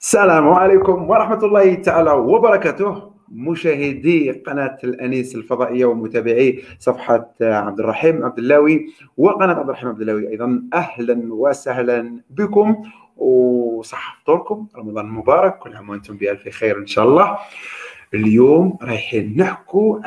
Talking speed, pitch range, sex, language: 120 wpm, 120-205 Hz, male, Arabic